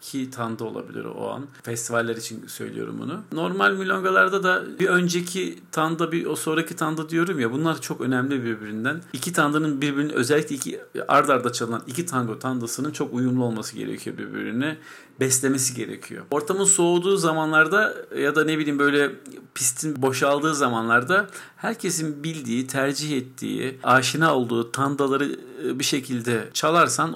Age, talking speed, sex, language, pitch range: 50-69, 140 wpm, male, Turkish, 120-155 Hz